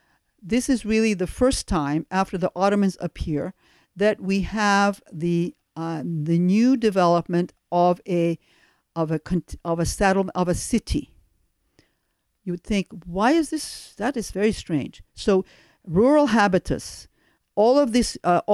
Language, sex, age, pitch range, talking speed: English, female, 50-69, 170-215 Hz, 140 wpm